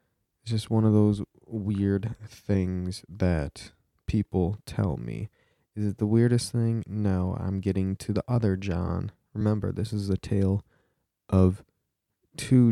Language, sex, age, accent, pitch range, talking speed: English, male, 20-39, American, 95-115 Hz, 140 wpm